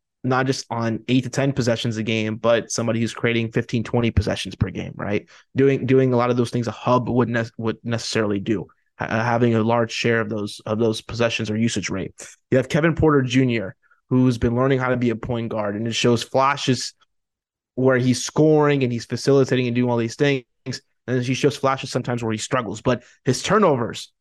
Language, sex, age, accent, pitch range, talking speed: English, male, 20-39, American, 115-130 Hz, 215 wpm